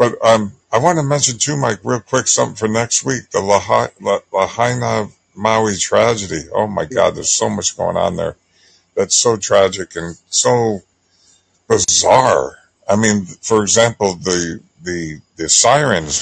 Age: 60-79